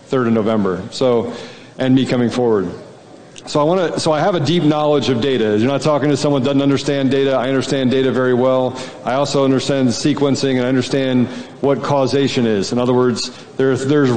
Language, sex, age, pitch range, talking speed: English, male, 40-59, 130-150 Hz, 205 wpm